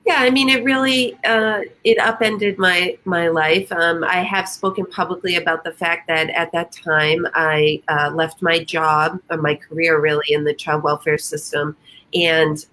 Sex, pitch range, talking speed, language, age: female, 155-205 Hz, 180 wpm, English, 30-49